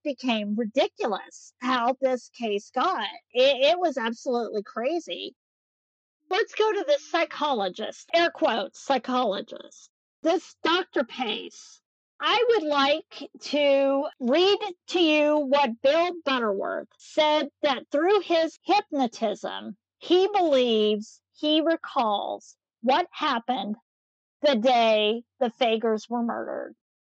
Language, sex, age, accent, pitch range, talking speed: English, female, 50-69, American, 245-325 Hz, 110 wpm